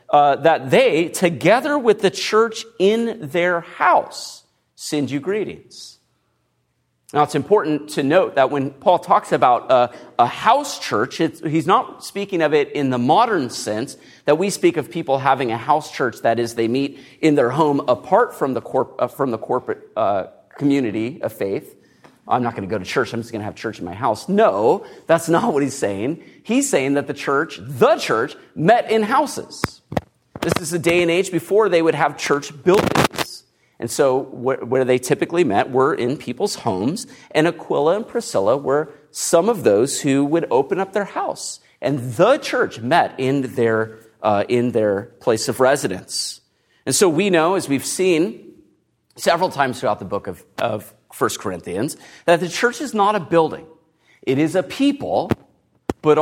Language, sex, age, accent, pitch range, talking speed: English, male, 40-59, American, 130-185 Hz, 185 wpm